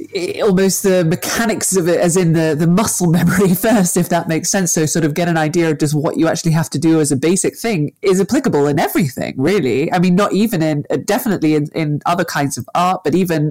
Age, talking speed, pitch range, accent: 20-39, 235 wpm, 155-195 Hz, British